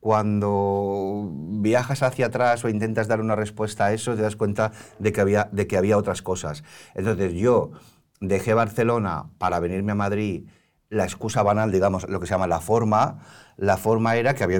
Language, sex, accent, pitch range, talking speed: Spanish, male, Spanish, 100-120 Hz, 185 wpm